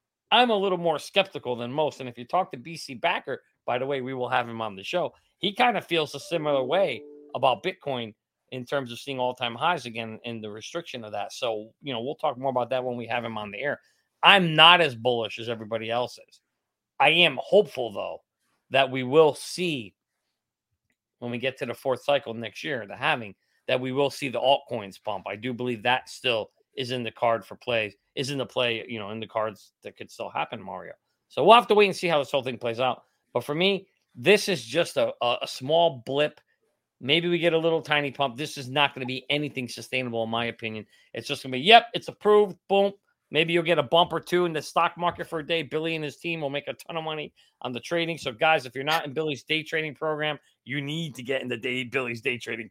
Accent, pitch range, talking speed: American, 120-165 Hz, 245 wpm